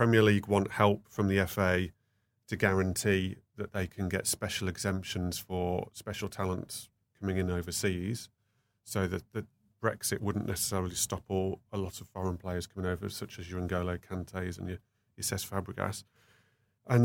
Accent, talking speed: British, 165 wpm